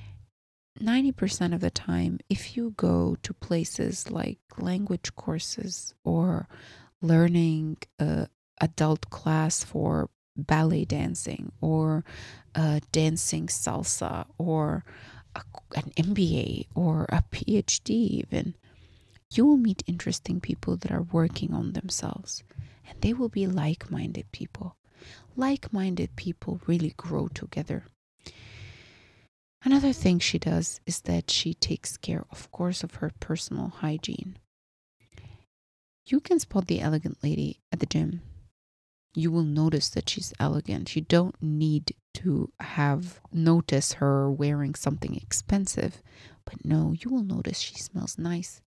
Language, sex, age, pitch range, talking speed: English, female, 30-49, 110-175 Hz, 120 wpm